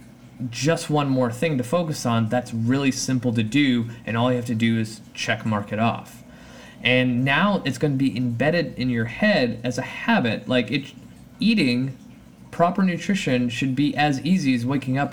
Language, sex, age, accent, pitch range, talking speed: English, male, 20-39, American, 120-140 Hz, 185 wpm